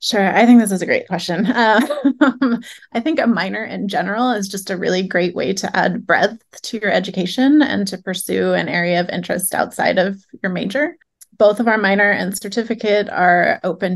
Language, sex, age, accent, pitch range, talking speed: English, female, 20-39, American, 185-220 Hz, 200 wpm